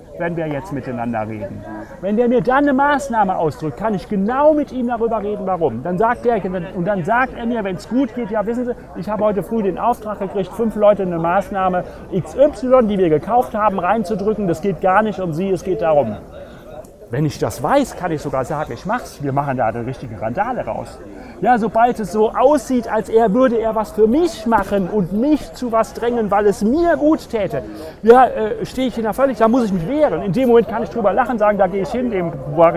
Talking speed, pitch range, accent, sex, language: 230 wpm, 185-245 Hz, German, male, English